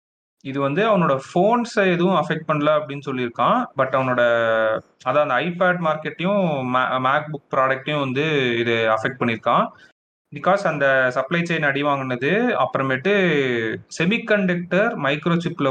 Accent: native